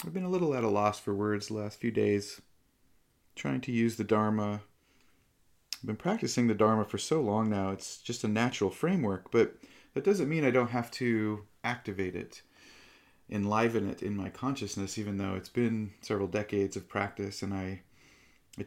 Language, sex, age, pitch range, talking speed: English, male, 30-49, 95-110 Hz, 185 wpm